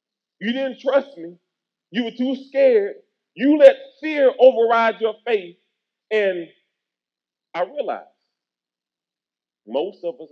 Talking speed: 115 wpm